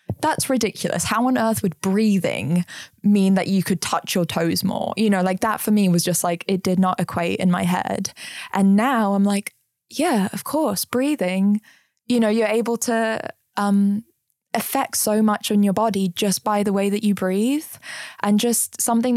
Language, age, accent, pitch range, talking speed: English, 10-29, British, 185-215 Hz, 190 wpm